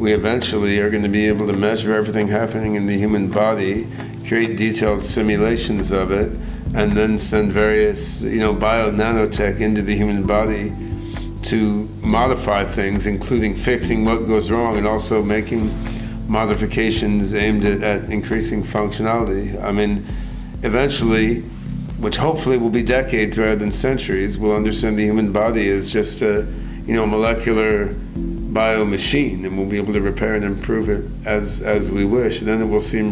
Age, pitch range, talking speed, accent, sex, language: 50-69, 105-115 Hz, 160 wpm, American, male, English